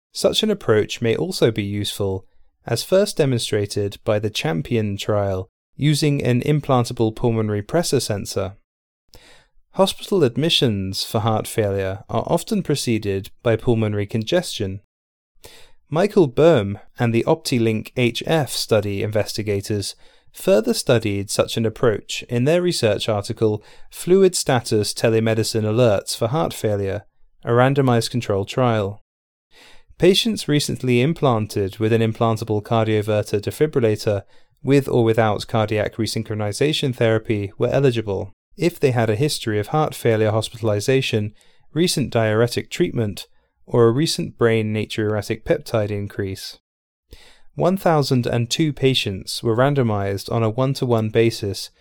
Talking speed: 120 wpm